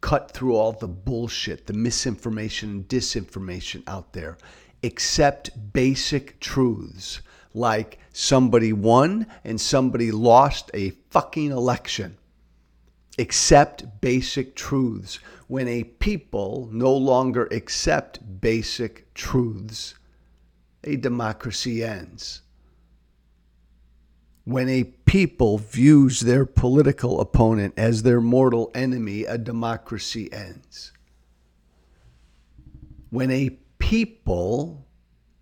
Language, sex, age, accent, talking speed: English, male, 50-69, American, 90 wpm